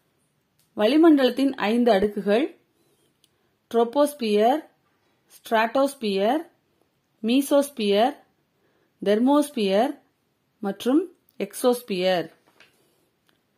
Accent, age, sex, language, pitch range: native, 30-49, female, Tamil, 205-265 Hz